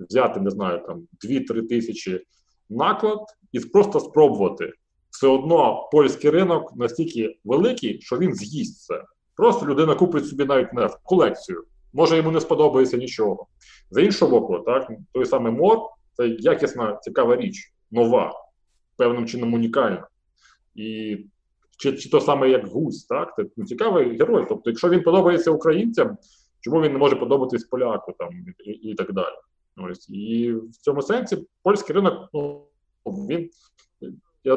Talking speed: 150 wpm